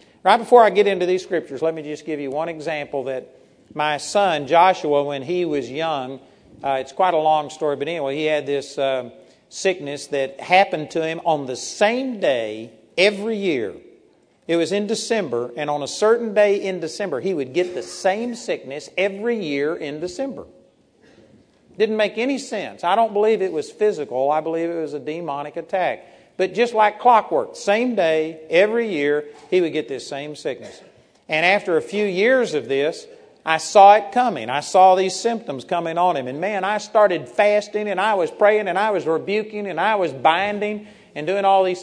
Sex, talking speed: male, 195 wpm